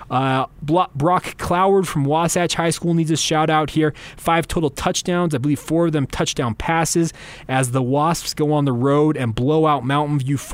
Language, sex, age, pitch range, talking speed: English, male, 20-39, 125-155 Hz, 190 wpm